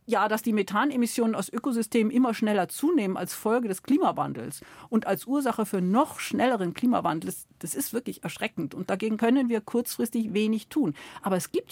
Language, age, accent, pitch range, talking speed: German, 50-69, German, 185-235 Hz, 175 wpm